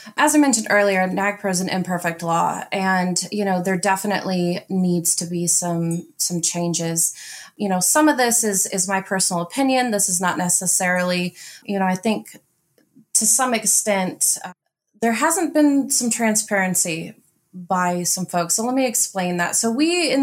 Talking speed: 170 wpm